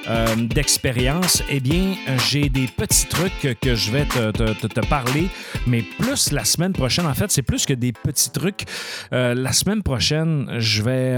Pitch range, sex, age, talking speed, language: 110-140 Hz, male, 40-59, 180 wpm, French